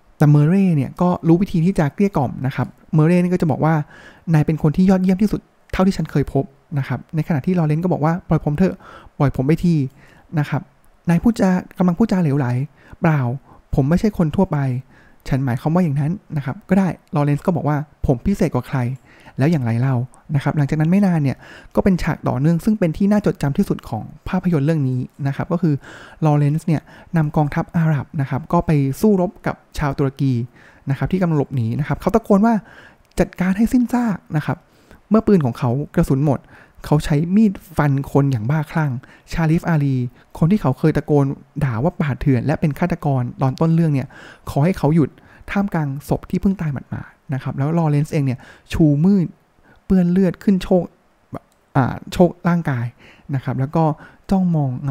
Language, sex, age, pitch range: Thai, male, 20-39, 140-180 Hz